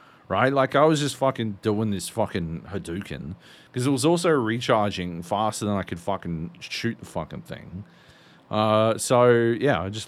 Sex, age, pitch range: male, 40-59, 95-130 Hz